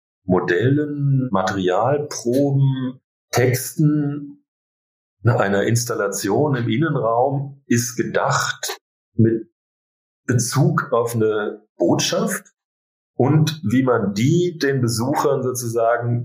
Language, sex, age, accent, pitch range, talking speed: German, male, 40-59, German, 110-145 Hz, 80 wpm